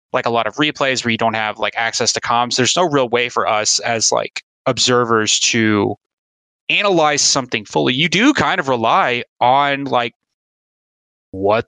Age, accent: 20-39, American